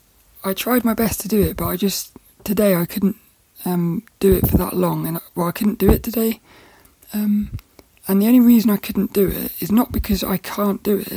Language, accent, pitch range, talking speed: English, British, 180-210 Hz, 225 wpm